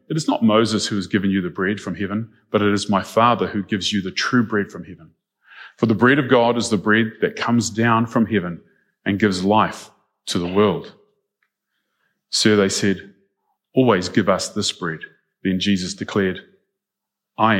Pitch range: 100-120 Hz